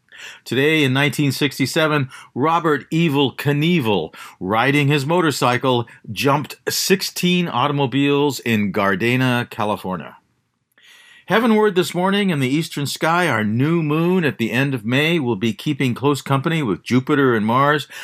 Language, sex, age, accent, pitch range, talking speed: English, male, 50-69, American, 115-150 Hz, 130 wpm